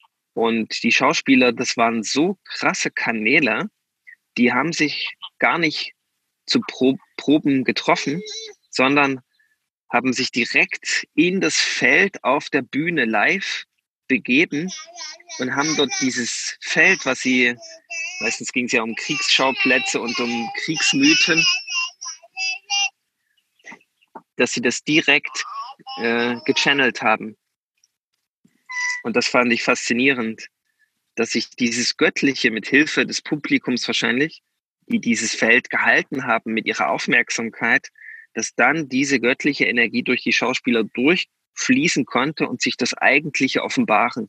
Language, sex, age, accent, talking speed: German, male, 20-39, German, 120 wpm